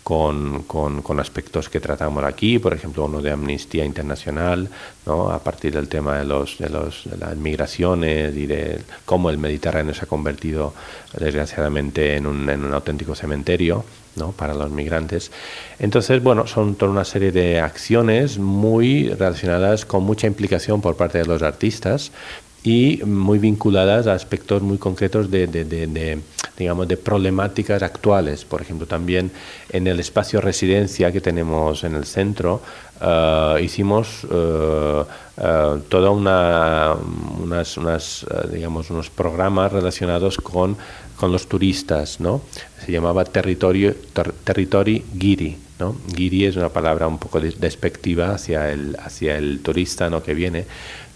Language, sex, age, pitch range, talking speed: French, male, 40-59, 75-95 Hz, 150 wpm